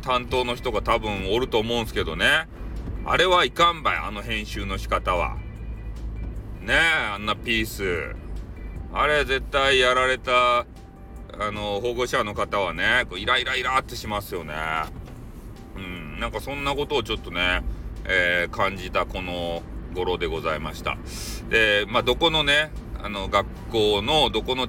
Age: 40-59